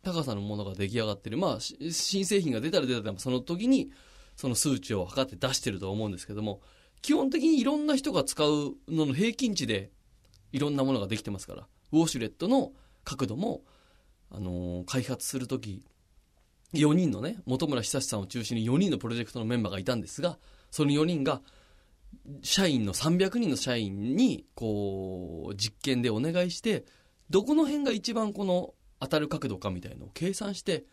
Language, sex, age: Japanese, male, 20-39